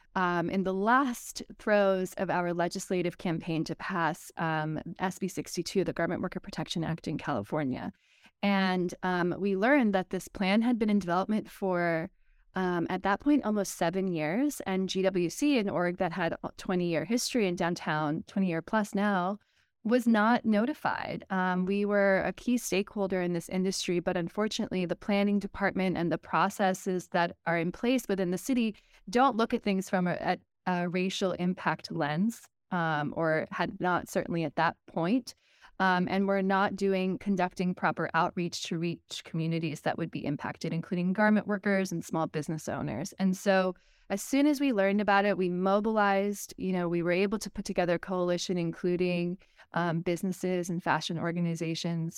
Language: English